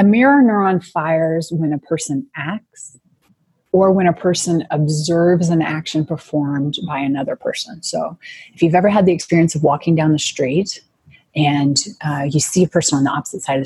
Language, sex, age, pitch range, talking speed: English, female, 30-49, 155-195 Hz, 185 wpm